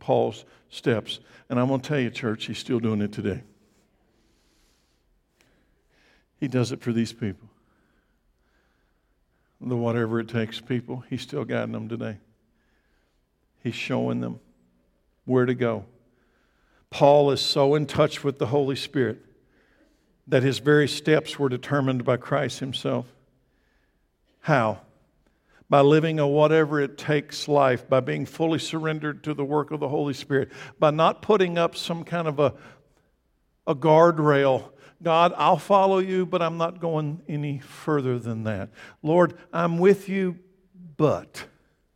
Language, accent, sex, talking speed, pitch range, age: English, American, male, 140 wpm, 120-155 Hz, 60-79